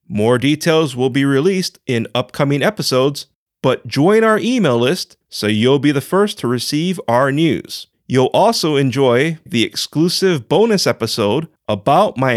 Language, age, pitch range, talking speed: English, 30-49, 115-180 Hz, 150 wpm